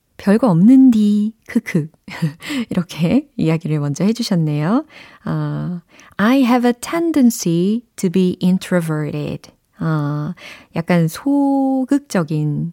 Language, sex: Korean, female